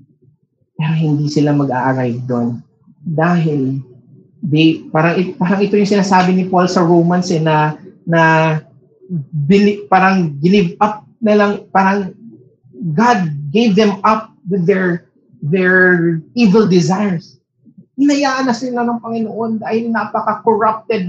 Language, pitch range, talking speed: English, 150-205 Hz, 115 wpm